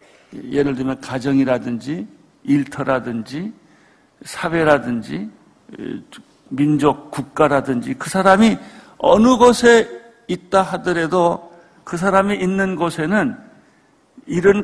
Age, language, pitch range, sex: 50-69, Korean, 150-190 Hz, male